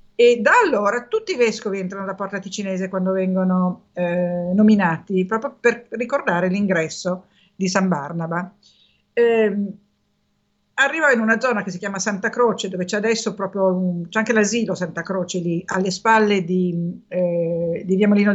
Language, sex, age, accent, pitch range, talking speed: Italian, female, 50-69, native, 180-225 Hz, 155 wpm